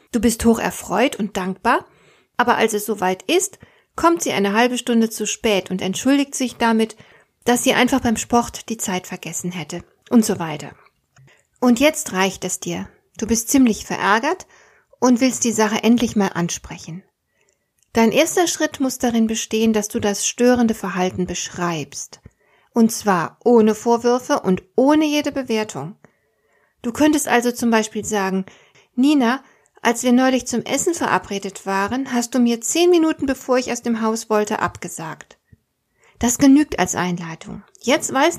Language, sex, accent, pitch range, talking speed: German, female, German, 200-255 Hz, 160 wpm